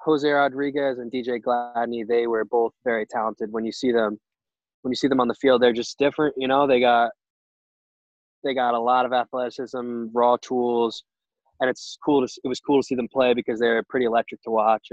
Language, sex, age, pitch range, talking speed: English, male, 20-39, 110-125 Hz, 215 wpm